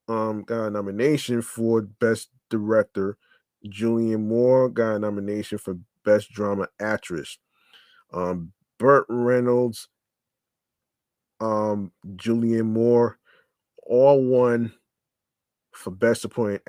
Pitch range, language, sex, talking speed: 105-125 Hz, English, male, 95 wpm